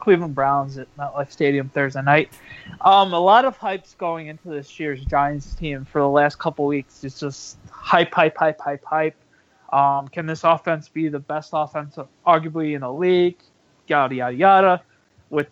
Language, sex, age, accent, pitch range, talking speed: English, male, 20-39, American, 150-185 Hz, 180 wpm